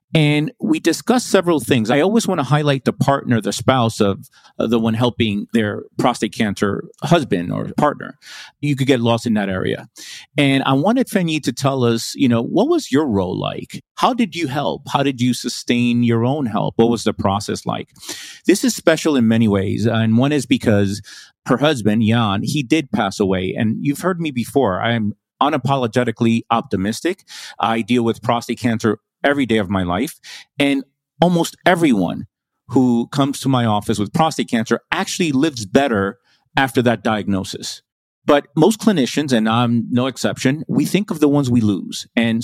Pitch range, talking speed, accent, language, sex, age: 115-145 Hz, 180 wpm, American, English, male, 40-59